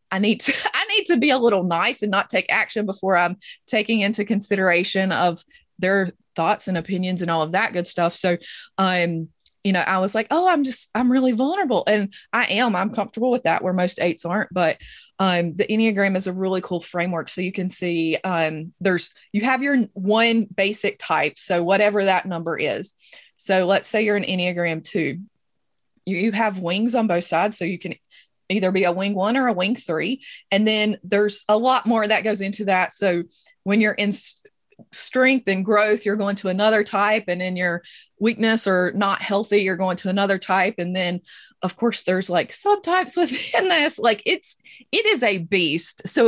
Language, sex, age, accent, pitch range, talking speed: English, female, 20-39, American, 185-230 Hz, 205 wpm